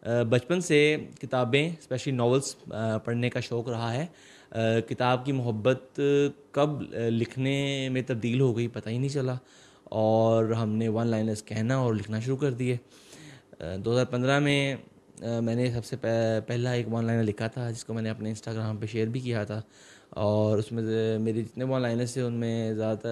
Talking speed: 180 wpm